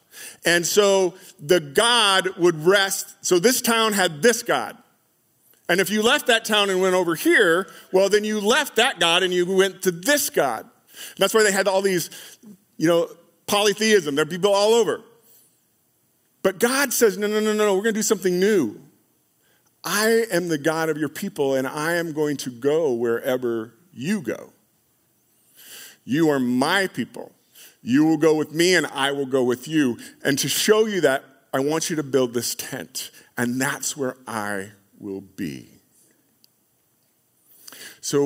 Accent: American